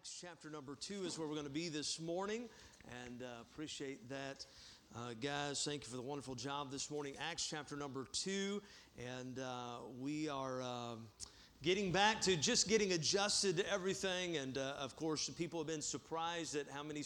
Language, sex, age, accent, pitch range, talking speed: English, male, 40-59, American, 135-170 Hz, 190 wpm